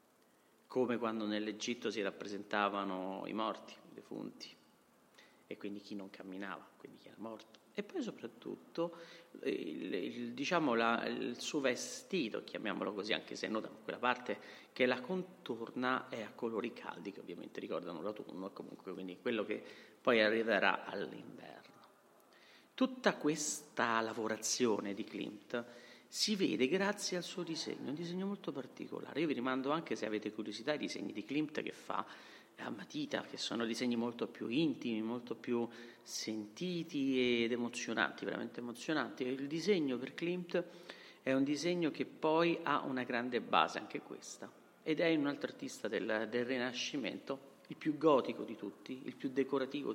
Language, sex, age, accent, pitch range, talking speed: Italian, male, 40-59, native, 115-160 Hz, 155 wpm